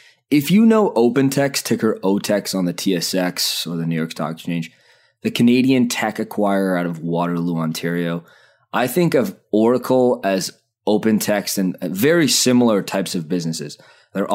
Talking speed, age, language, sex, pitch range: 150 wpm, 20-39, English, male, 85-105 Hz